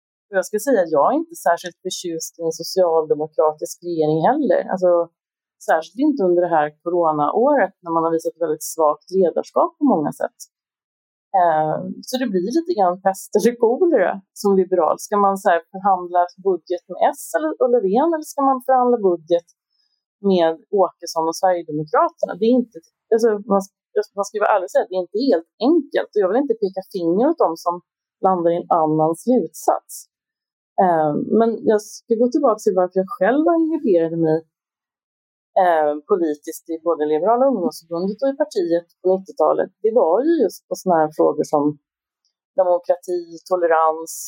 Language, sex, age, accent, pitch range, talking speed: Swedish, female, 30-49, native, 170-235 Hz, 165 wpm